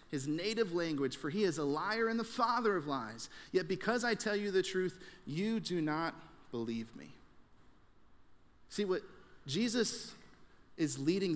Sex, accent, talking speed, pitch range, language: male, American, 160 wpm, 130-195 Hz, English